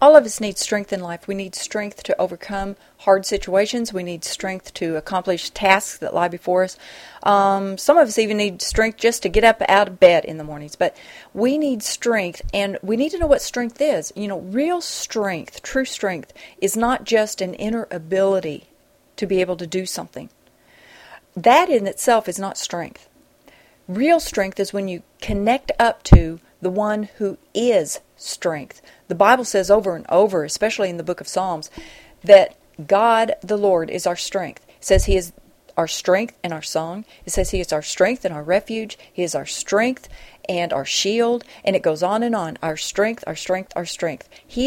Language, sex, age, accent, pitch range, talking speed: English, female, 40-59, American, 185-230 Hz, 195 wpm